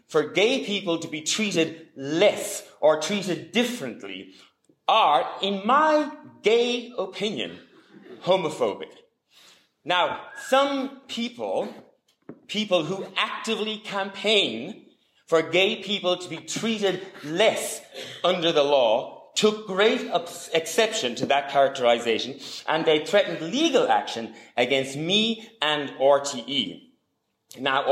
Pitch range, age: 145-215 Hz, 30-49